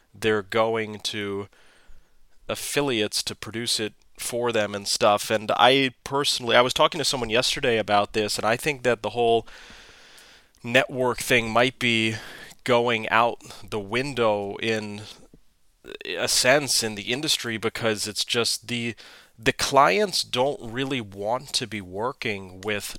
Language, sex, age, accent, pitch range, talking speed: English, male, 30-49, American, 105-125 Hz, 145 wpm